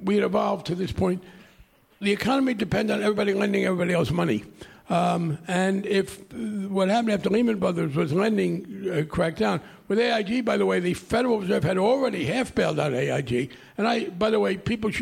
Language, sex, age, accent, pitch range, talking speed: English, male, 60-79, American, 180-225 Hz, 190 wpm